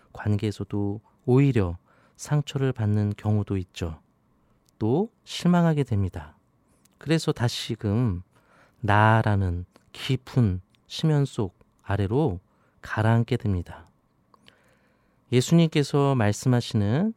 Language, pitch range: Korean, 100-130 Hz